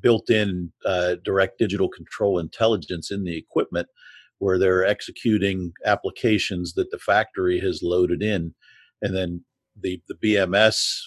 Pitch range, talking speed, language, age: 95-110 Hz, 125 wpm, English, 50-69